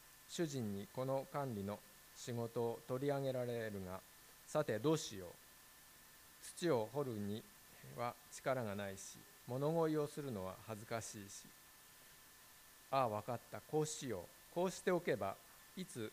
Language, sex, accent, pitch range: Japanese, male, native, 105-145 Hz